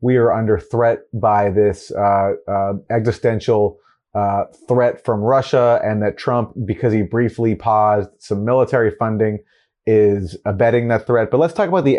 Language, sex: English, male